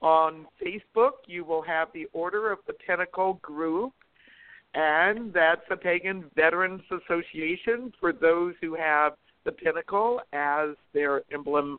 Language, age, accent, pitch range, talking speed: English, 60-79, American, 160-205 Hz, 130 wpm